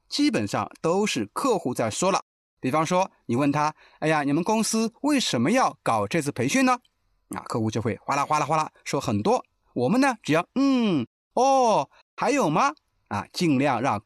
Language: Chinese